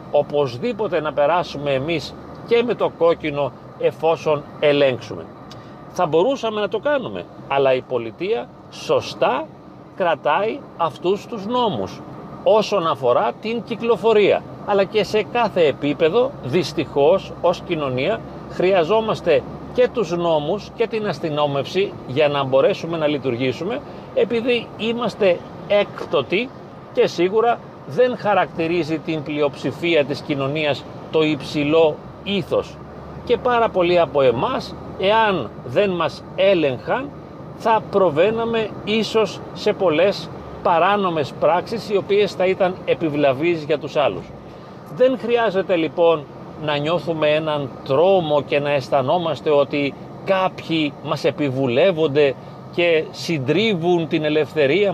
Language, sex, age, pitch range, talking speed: Greek, male, 40-59, 150-205 Hz, 110 wpm